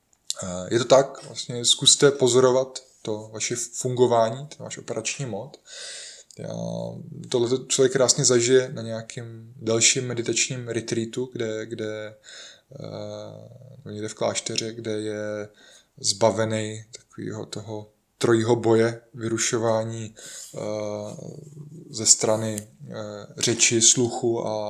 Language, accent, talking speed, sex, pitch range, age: Czech, native, 100 wpm, male, 110-130 Hz, 20-39